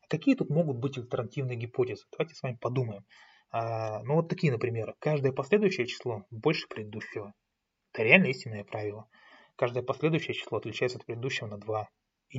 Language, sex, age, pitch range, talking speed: Russian, male, 20-39, 110-140 Hz, 155 wpm